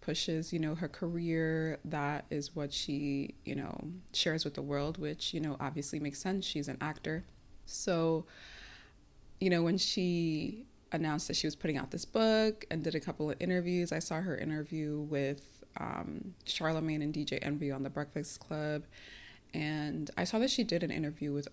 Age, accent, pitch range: 20-39, American, 145-175 Hz